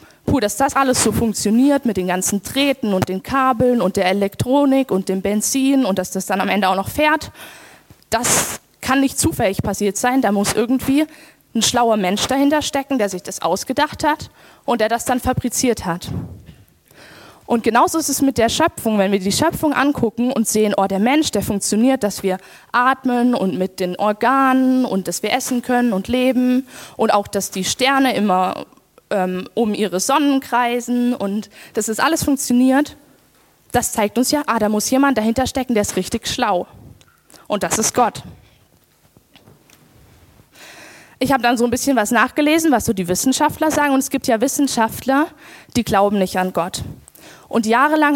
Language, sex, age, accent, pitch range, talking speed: German, female, 20-39, German, 200-270 Hz, 180 wpm